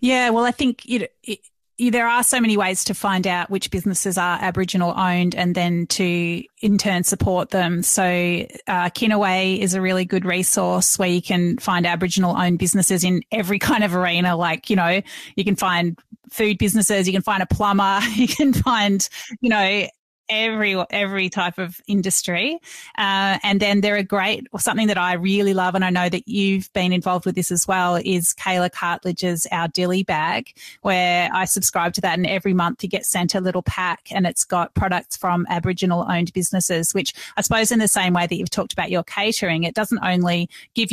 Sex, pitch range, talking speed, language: female, 180-205 Hz, 200 wpm, English